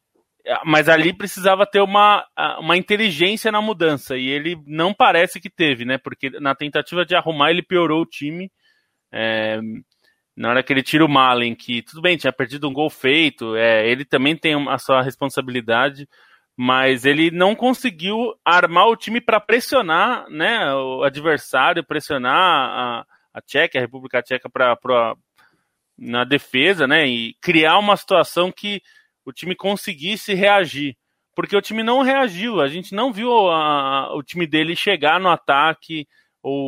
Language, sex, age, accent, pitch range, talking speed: Portuguese, male, 20-39, Brazilian, 140-190 Hz, 160 wpm